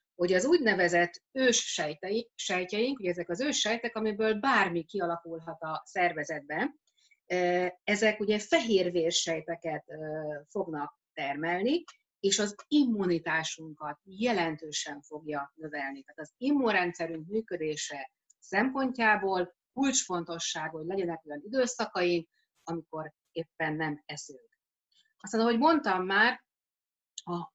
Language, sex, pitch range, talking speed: Hungarian, female, 160-225 Hz, 95 wpm